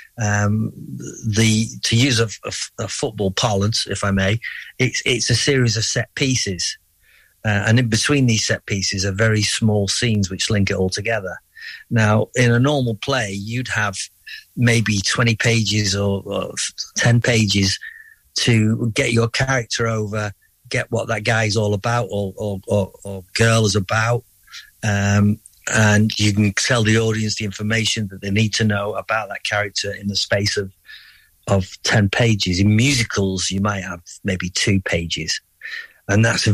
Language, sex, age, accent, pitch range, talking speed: English, male, 40-59, British, 100-115 Hz, 165 wpm